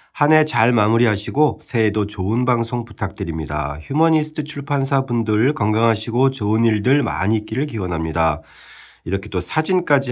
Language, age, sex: Korean, 40-59, male